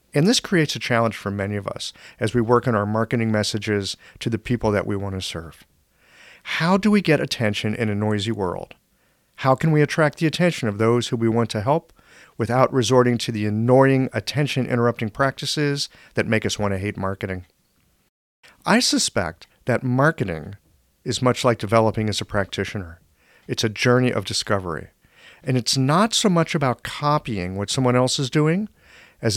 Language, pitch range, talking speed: English, 105-145 Hz, 180 wpm